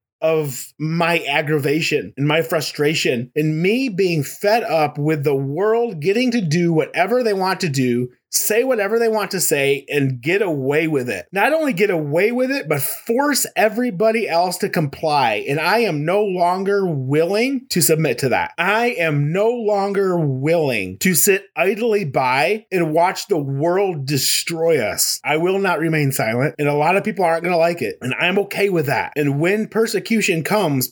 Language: English